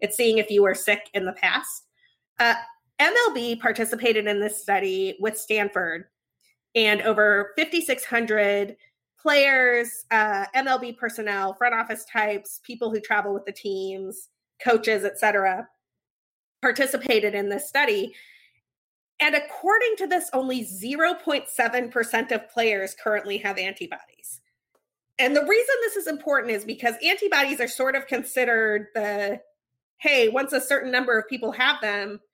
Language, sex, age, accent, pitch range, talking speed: English, female, 20-39, American, 205-280 Hz, 135 wpm